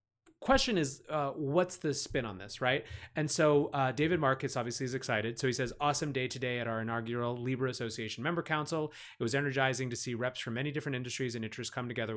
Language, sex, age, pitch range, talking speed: English, male, 30-49, 115-140 Hz, 215 wpm